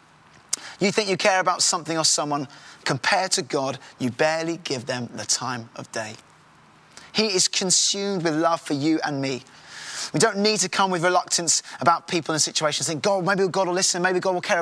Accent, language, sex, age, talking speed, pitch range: British, English, male, 20-39, 210 wpm, 150-195 Hz